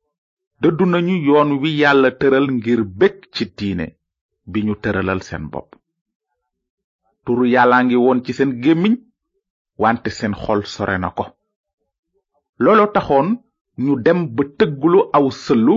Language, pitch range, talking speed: French, 115-190 Hz, 95 wpm